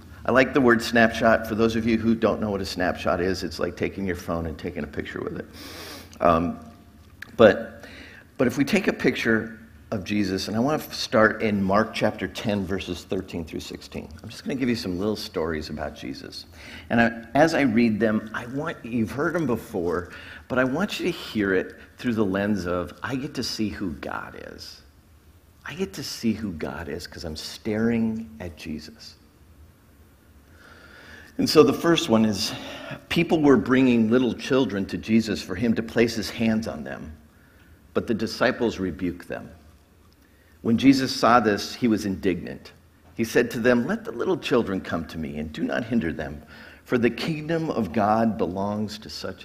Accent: American